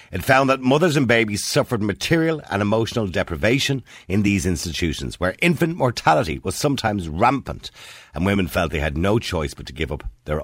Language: English